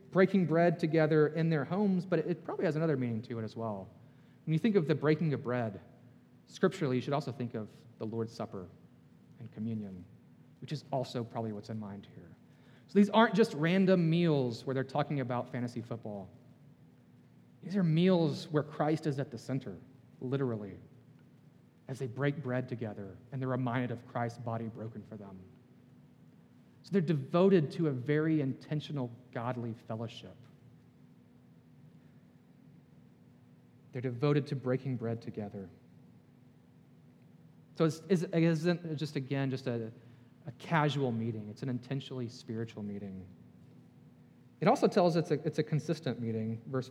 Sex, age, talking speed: male, 30-49, 155 wpm